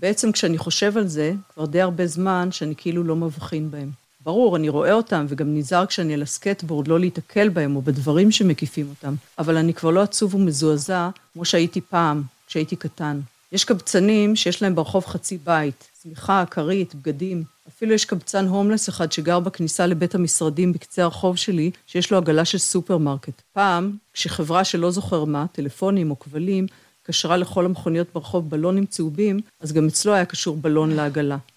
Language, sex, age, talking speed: Hebrew, female, 50-69, 170 wpm